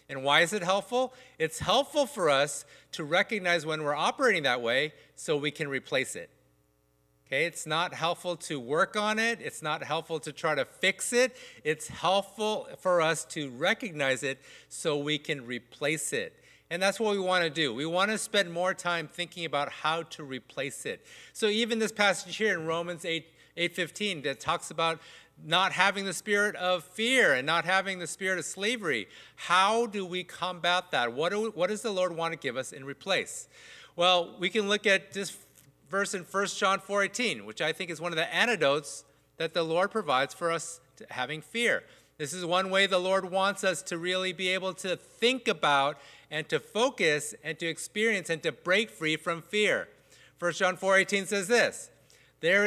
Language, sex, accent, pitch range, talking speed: English, male, American, 155-200 Hz, 195 wpm